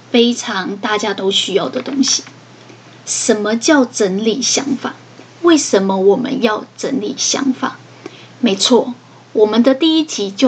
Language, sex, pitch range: Chinese, female, 215-260 Hz